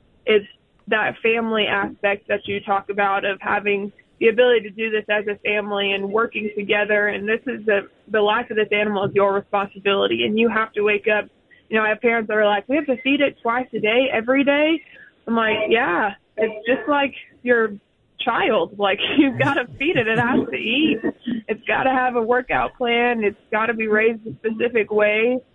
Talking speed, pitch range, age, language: 210 wpm, 205-235 Hz, 20-39, English